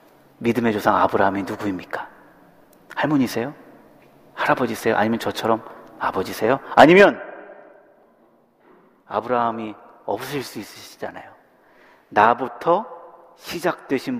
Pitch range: 125-205 Hz